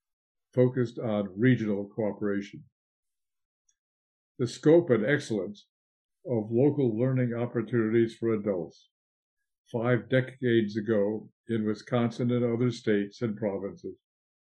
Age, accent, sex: 60-79, American, male